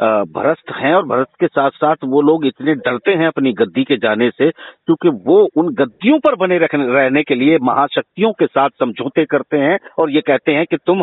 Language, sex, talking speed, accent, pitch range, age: Hindi, male, 205 wpm, native, 150-240 Hz, 50-69